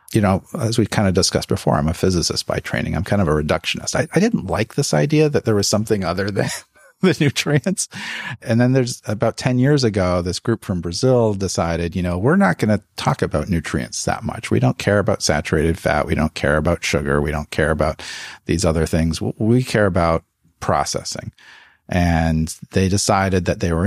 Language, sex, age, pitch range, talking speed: English, male, 40-59, 85-120 Hz, 210 wpm